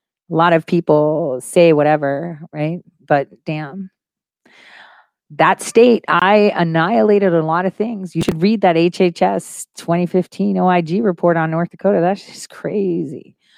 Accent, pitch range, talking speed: American, 155-195 Hz, 135 wpm